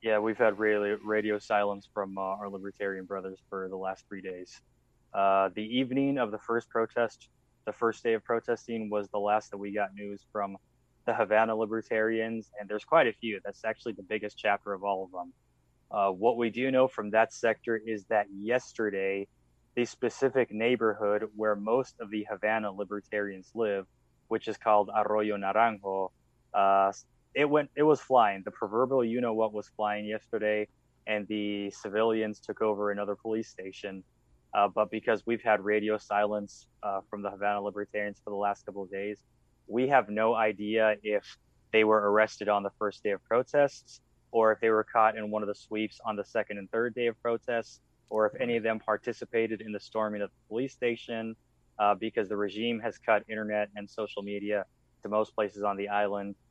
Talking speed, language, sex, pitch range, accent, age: 190 wpm, English, male, 100-115 Hz, American, 20-39